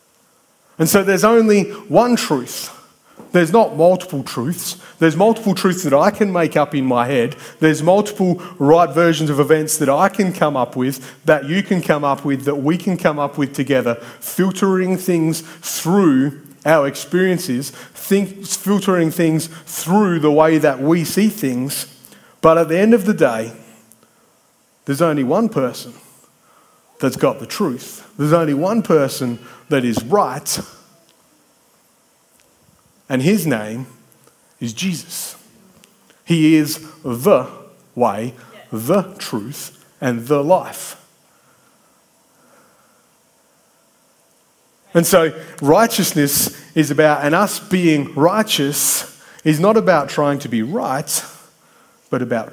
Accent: Australian